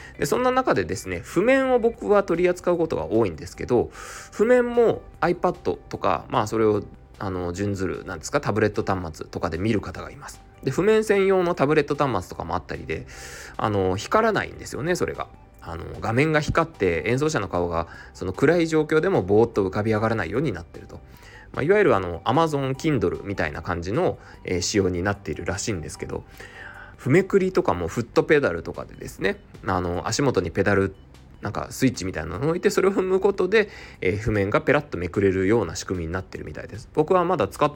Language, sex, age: Japanese, male, 20-39